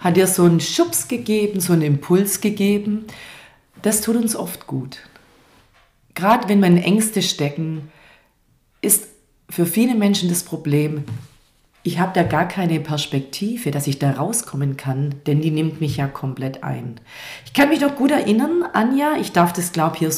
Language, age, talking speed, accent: German, 40-59, 170 wpm, German